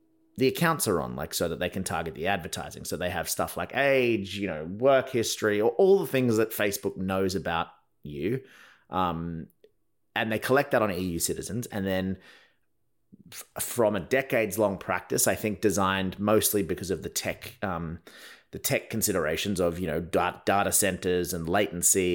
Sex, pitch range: male, 95-115 Hz